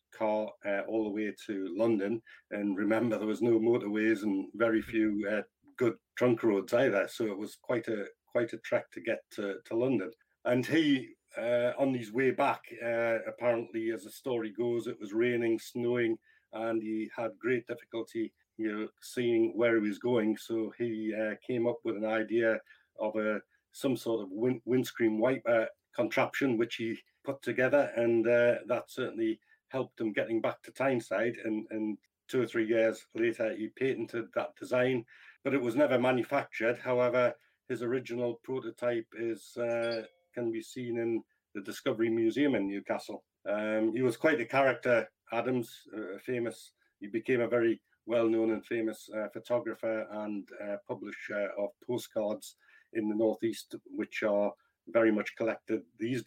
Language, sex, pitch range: English, male, 110-125 Hz